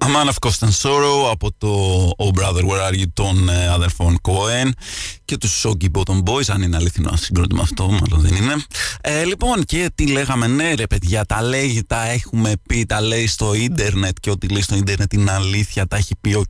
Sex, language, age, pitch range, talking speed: male, Greek, 20-39, 95-115 Hz, 200 wpm